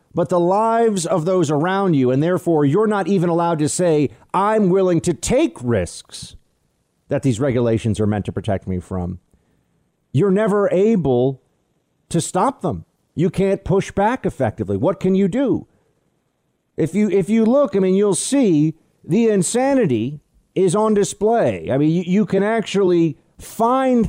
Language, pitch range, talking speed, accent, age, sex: English, 140-195 Hz, 160 wpm, American, 40-59, male